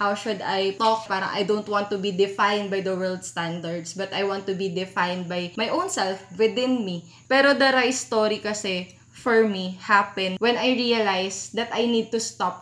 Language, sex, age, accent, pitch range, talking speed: Filipino, female, 20-39, native, 180-220 Hz, 205 wpm